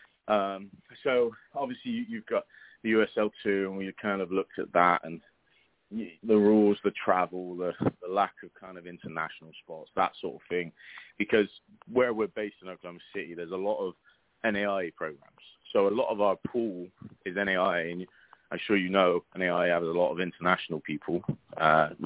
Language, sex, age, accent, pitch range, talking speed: English, male, 30-49, British, 80-95 Hz, 175 wpm